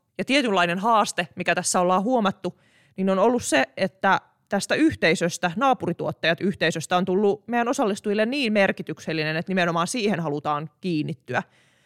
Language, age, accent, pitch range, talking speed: Finnish, 20-39, native, 165-210 Hz, 135 wpm